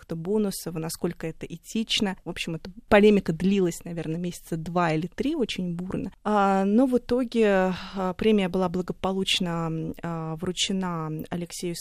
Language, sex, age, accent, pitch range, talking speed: Russian, female, 20-39, native, 170-195 Hz, 120 wpm